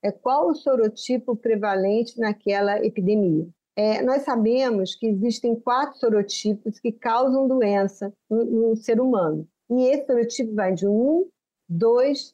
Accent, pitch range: Brazilian, 215-285 Hz